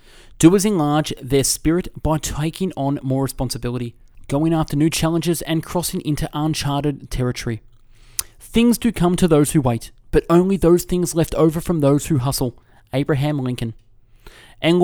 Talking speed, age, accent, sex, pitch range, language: 155 wpm, 20-39, Australian, male, 125-175 Hz, English